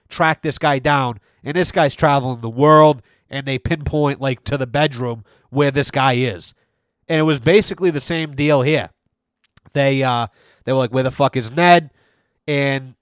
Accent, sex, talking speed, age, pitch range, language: American, male, 185 wpm, 30-49, 130-150 Hz, English